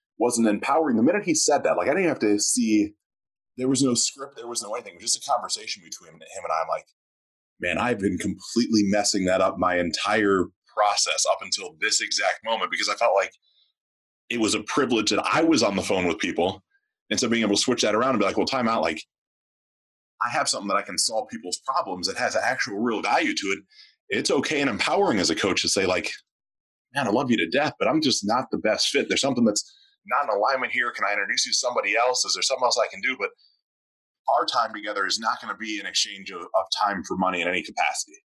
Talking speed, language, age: 245 wpm, English, 30-49